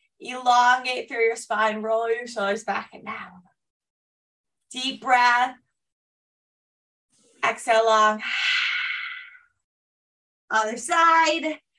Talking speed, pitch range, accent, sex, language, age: 80 wpm, 245-330 Hz, American, female, English, 20-39